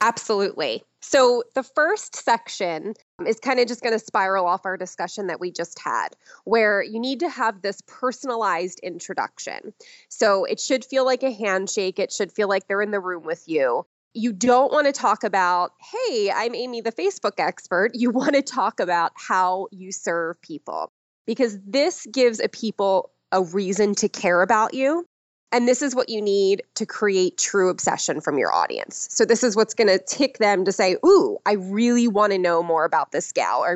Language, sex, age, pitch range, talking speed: English, female, 20-39, 185-245 Hz, 195 wpm